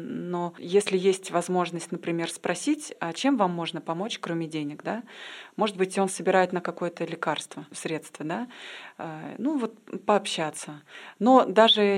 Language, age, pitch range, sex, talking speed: Russian, 30-49, 165-195 Hz, female, 140 wpm